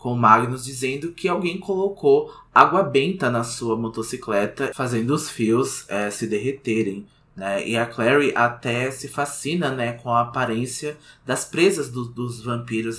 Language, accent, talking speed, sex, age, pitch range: Portuguese, Brazilian, 150 wpm, male, 20-39, 115-145 Hz